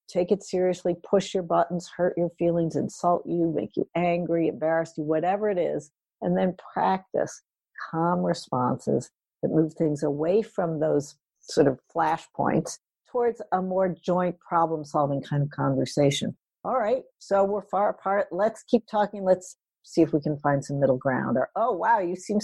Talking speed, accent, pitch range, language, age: 170 wpm, American, 150-205 Hz, English, 60-79